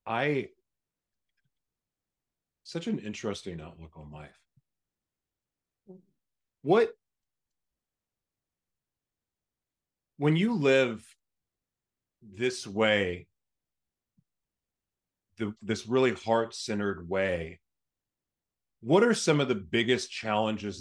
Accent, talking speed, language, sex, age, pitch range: American, 70 wpm, English, male, 40-59, 105-135 Hz